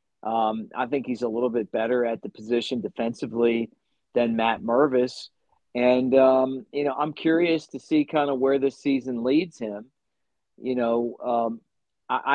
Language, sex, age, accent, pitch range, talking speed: English, male, 50-69, American, 125-150 Hz, 165 wpm